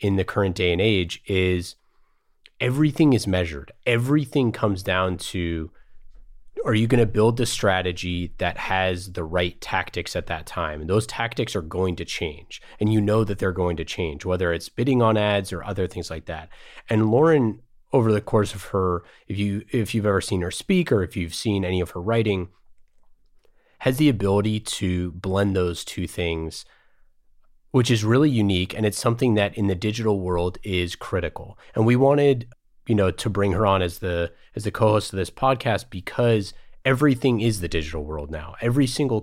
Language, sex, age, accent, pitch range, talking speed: English, male, 30-49, American, 90-115 Hz, 190 wpm